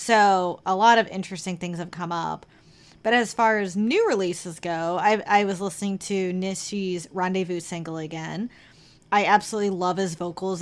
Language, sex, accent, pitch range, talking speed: English, female, American, 175-210 Hz, 170 wpm